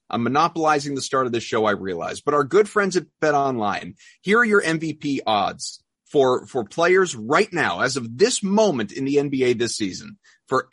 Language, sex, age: English, male, 30-49